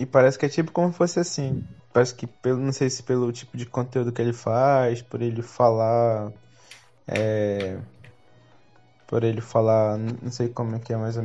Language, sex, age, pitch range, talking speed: Portuguese, male, 20-39, 120-135 Hz, 200 wpm